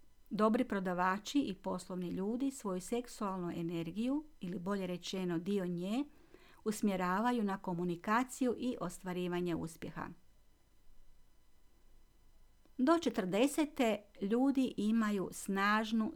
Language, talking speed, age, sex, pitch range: Croatian, 90 wpm, 50-69, female, 180-240 Hz